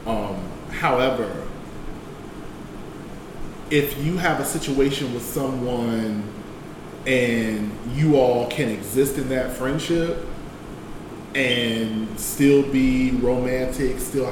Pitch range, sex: 115-135 Hz, male